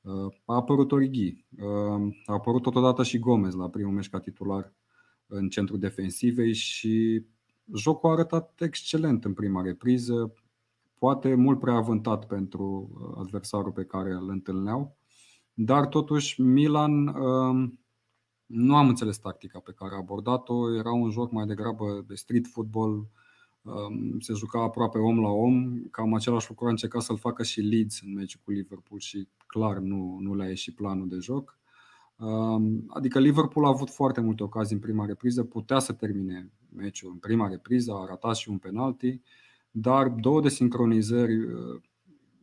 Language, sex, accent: Romanian, male, native